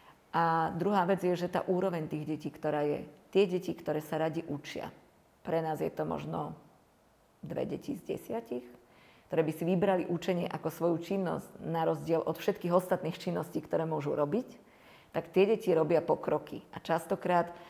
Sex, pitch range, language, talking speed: female, 160-190 Hz, Slovak, 170 wpm